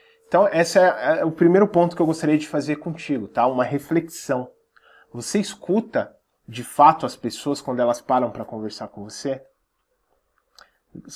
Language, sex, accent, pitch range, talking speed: Portuguese, male, Brazilian, 125-170 Hz, 155 wpm